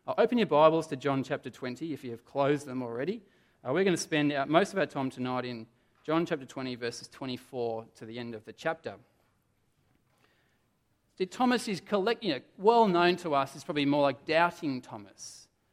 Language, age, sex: English, 30-49, male